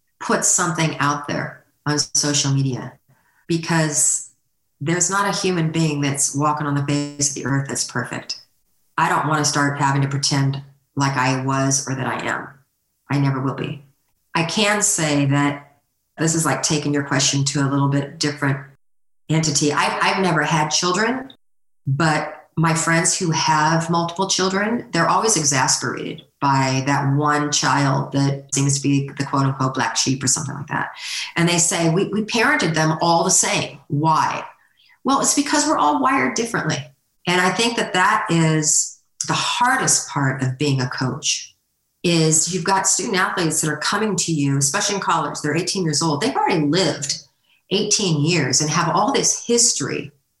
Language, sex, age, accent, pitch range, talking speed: English, female, 40-59, American, 140-170 Hz, 175 wpm